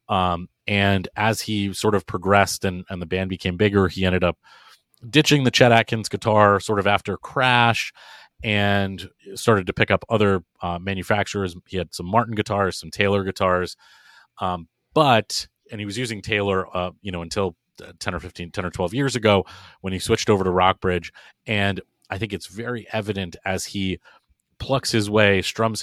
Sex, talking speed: male, 180 wpm